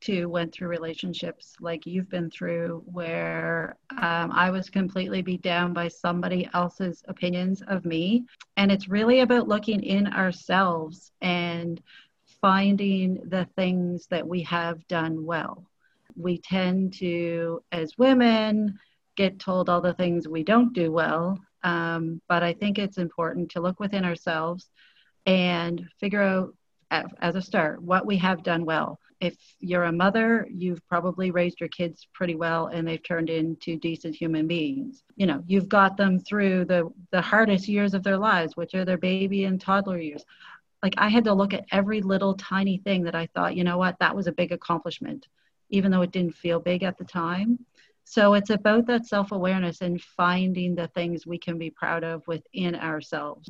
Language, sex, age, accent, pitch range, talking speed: English, female, 40-59, American, 170-195 Hz, 175 wpm